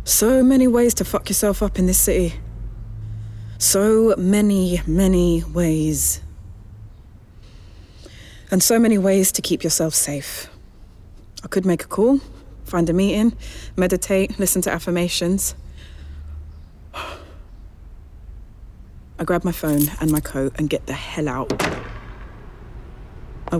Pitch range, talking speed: 105-170 Hz, 120 wpm